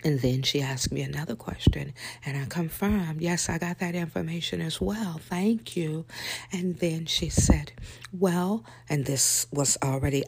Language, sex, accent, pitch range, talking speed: English, female, American, 130-175 Hz, 165 wpm